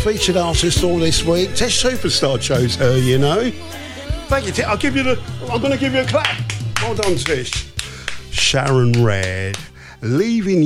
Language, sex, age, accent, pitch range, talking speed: English, male, 50-69, British, 115-180 Hz, 170 wpm